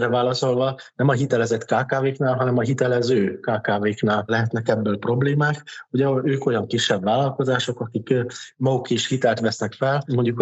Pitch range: 110-125 Hz